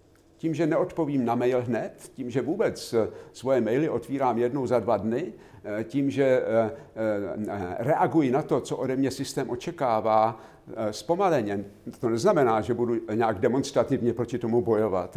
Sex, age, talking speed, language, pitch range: male, 50-69, 140 wpm, Slovak, 110-150 Hz